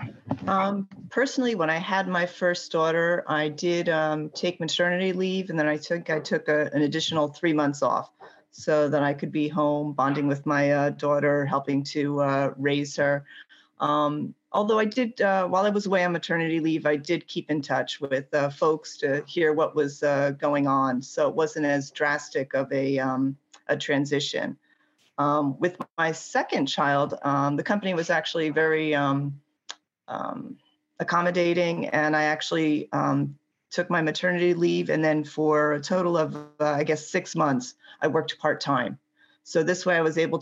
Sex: female